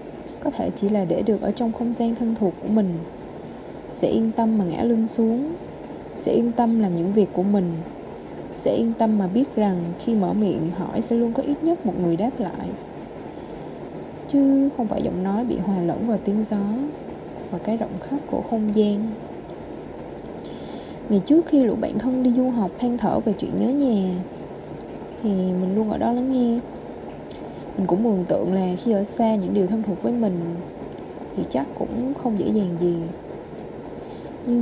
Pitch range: 190-240 Hz